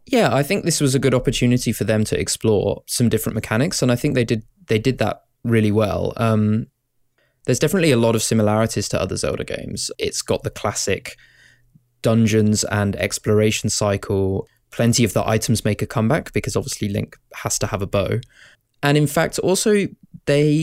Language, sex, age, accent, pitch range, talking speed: English, male, 20-39, British, 105-130 Hz, 185 wpm